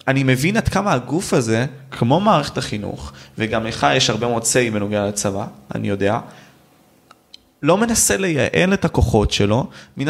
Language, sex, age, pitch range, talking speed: Hebrew, male, 20-39, 110-180 Hz, 155 wpm